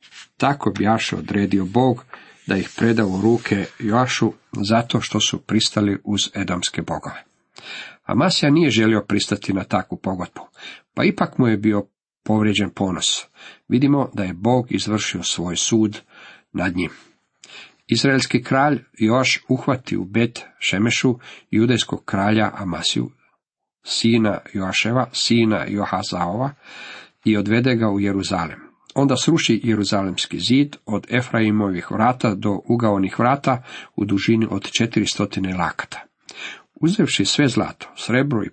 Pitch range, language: 100-125 Hz, Croatian